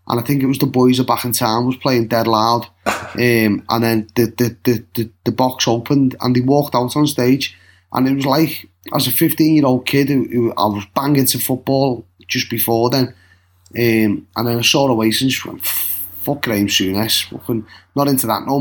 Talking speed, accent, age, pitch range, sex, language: 210 wpm, British, 20-39, 115-145 Hz, male, English